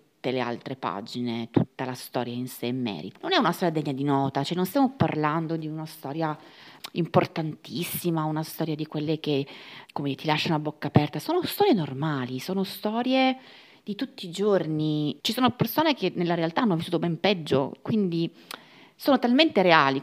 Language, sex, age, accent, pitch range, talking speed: Italian, female, 30-49, native, 140-185 Hz, 175 wpm